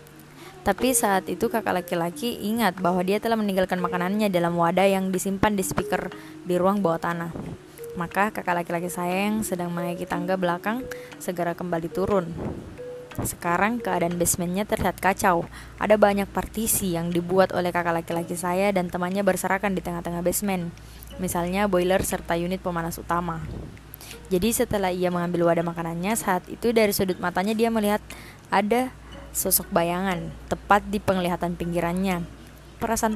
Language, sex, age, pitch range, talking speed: Indonesian, female, 20-39, 175-205 Hz, 145 wpm